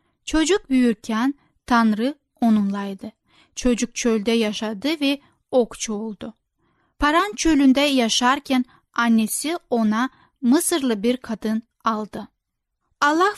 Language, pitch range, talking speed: Turkish, 225-275 Hz, 90 wpm